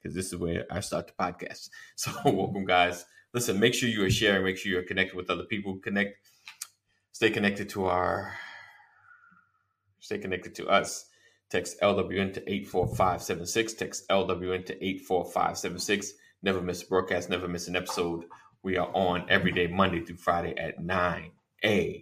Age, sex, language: 20-39, male, English